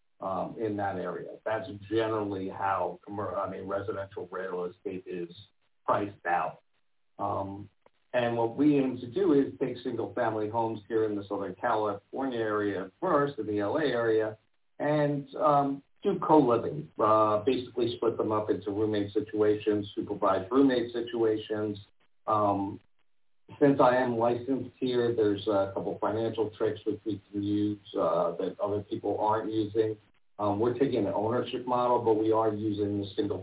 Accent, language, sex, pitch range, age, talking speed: American, English, male, 100-115 Hz, 50-69, 150 wpm